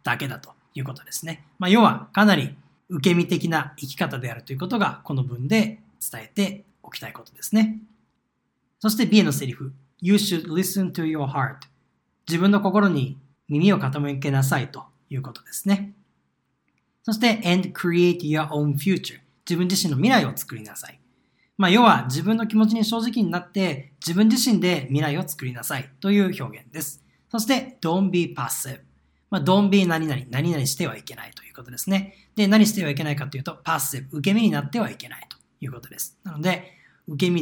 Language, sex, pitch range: Japanese, male, 140-200 Hz